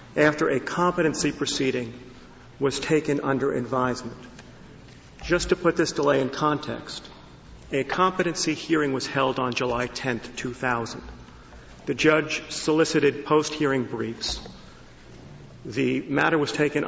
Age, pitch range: 40-59, 125-155 Hz